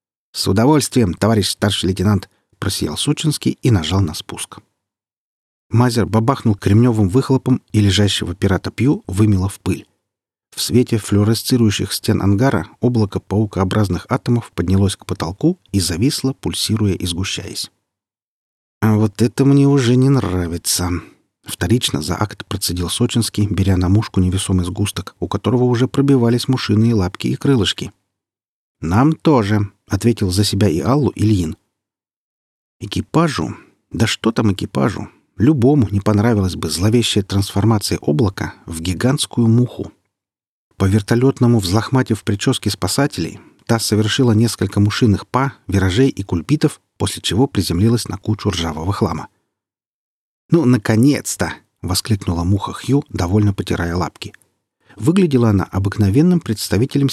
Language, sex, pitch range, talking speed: Russian, male, 95-120 Hz, 125 wpm